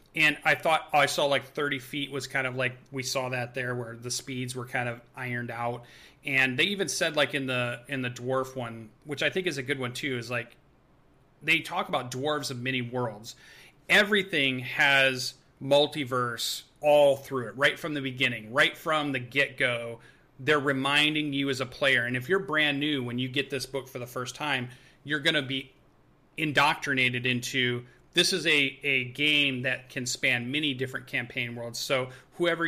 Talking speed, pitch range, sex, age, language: 195 wpm, 125-150 Hz, male, 30-49, English